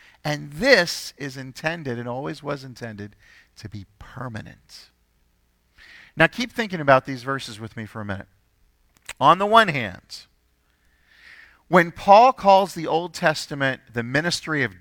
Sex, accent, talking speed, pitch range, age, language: male, American, 140 wpm, 120-170 Hz, 40-59, English